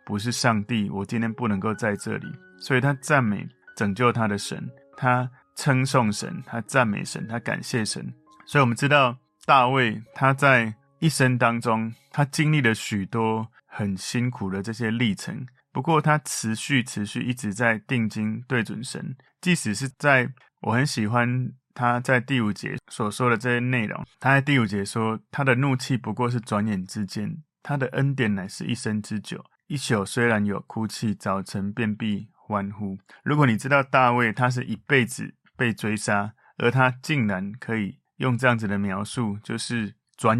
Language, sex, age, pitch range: Chinese, male, 20-39, 105-130 Hz